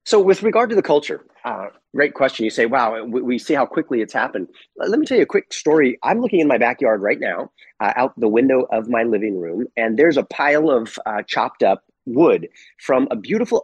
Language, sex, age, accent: English, male, 30-49, American